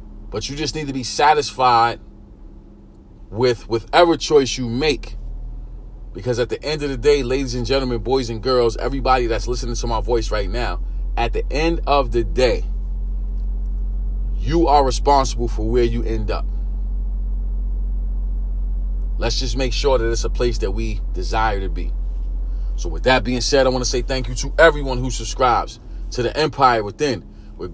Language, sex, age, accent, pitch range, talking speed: English, male, 30-49, American, 110-135 Hz, 175 wpm